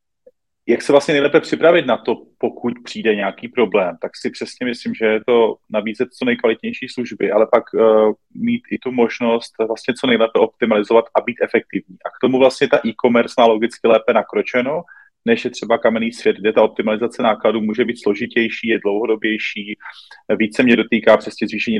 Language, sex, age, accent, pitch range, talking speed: Czech, male, 30-49, native, 110-130 Hz, 180 wpm